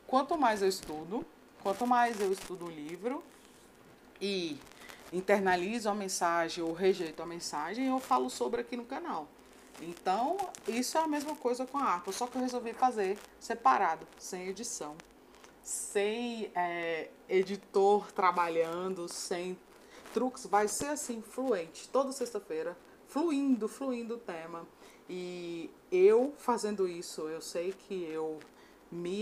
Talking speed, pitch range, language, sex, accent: 135 wpm, 175-245 Hz, Portuguese, female, Brazilian